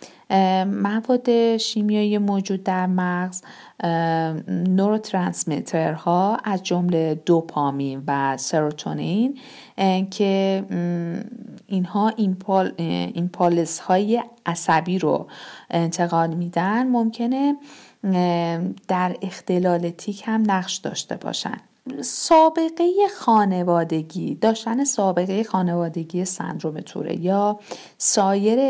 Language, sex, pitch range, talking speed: Persian, female, 170-215 Hz, 85 wpm